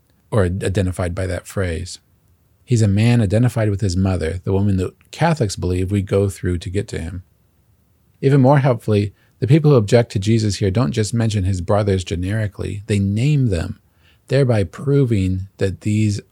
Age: 40-59